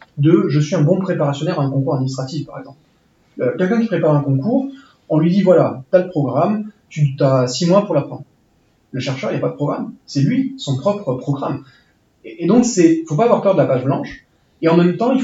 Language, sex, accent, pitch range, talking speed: French, male, French, 140-180 Hz, 265 wpm